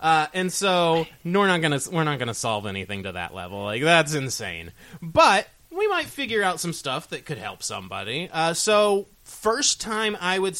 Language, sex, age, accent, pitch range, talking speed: English, male, 20-39, American, 115-170 Hz, 185 wpm